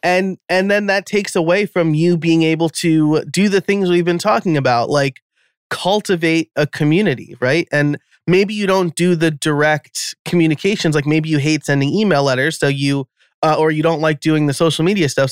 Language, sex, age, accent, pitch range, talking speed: English, male, 20-39, American, 135-170 Hz, 195 wpm